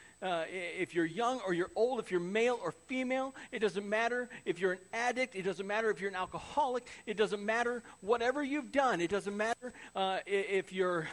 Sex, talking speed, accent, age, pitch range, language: male, 205 wpm, American, 40-59, 165-240 Hz, English